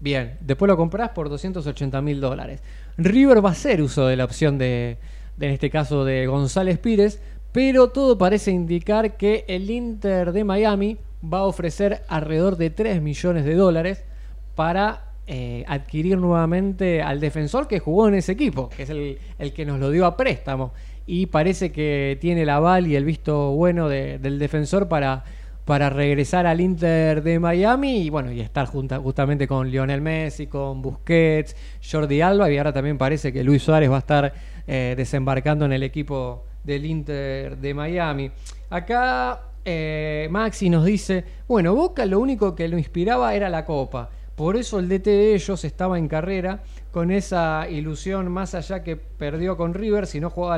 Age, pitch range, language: 20-39, 140-180 Hz, Spanish